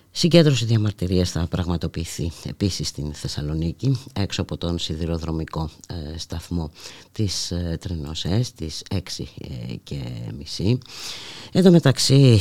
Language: Greek